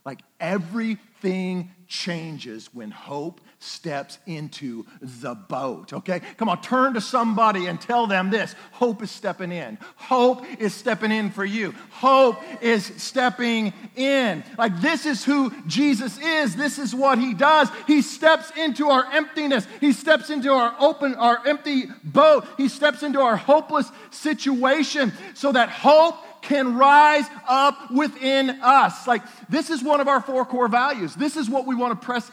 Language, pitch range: English, 180-265 Hz